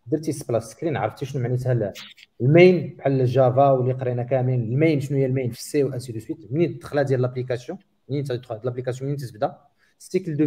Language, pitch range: Arabic, 110-150 Hz